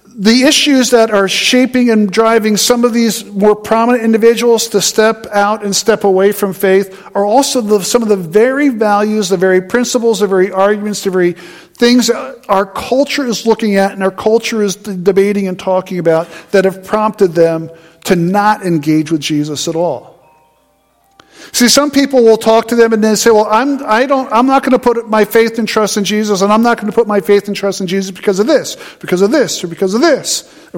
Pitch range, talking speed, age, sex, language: 190-230 Hz, 215 wpm, 50-69, male, English